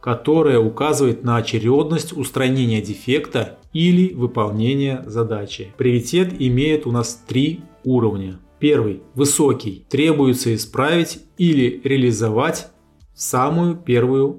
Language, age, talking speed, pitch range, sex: Russian, 20-39, 100 wpm, 115-145 Hz, male